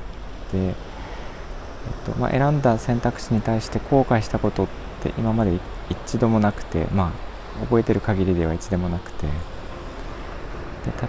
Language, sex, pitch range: Japanese, male, 90-115 Hz